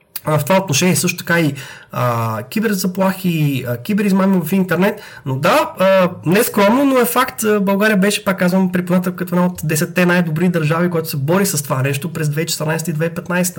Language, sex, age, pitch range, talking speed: Bulgarian, male, 20-39, 165-235 Hz, 170 wpm